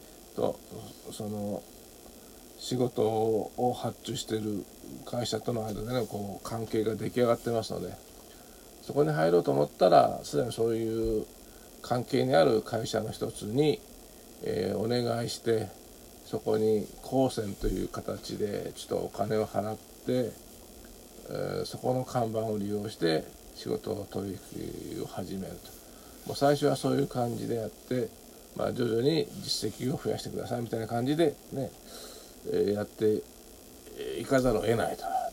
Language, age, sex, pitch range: Japanese, 50-69, male, 105-125 Hz